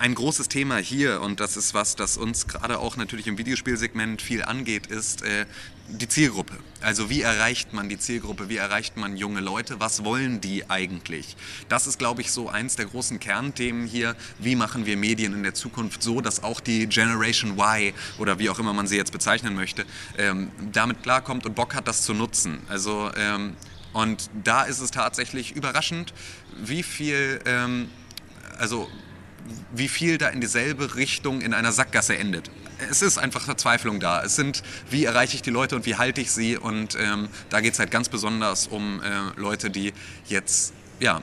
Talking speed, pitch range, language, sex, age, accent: 190 wpm, 100-120 Hz, German, male, 30-49, German